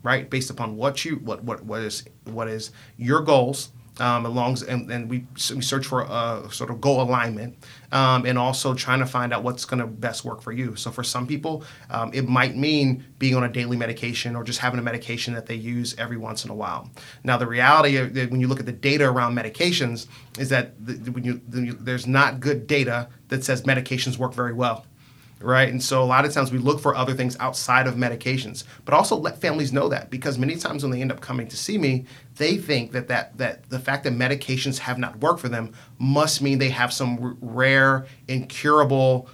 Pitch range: 120-135 Hz